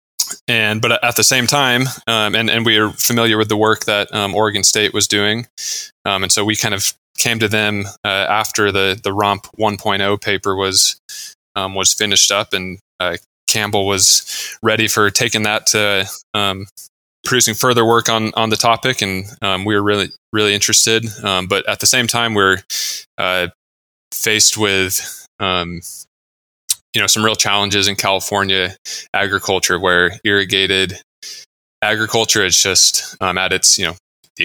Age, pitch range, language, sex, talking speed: 20-39, 95-110 Hz, English, male, 170 wpm